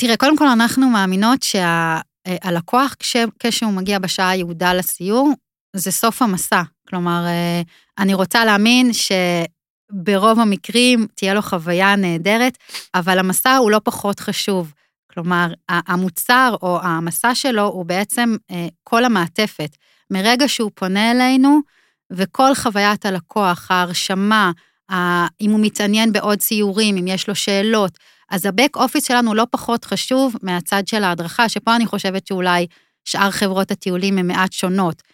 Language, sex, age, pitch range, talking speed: Hebrew, female, 30-49, 180-230 Hz, 130 wpm